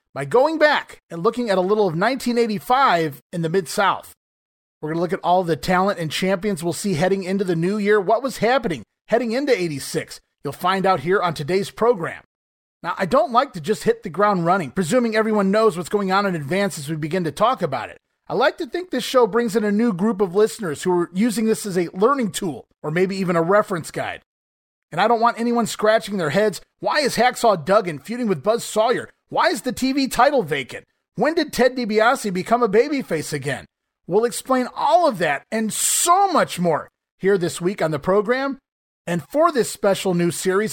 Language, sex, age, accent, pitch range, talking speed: English, male, 30-49, American, 180-235 Hz, 215 wpm